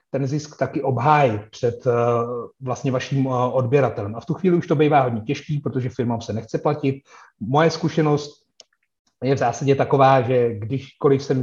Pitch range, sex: 115-145 Hz, male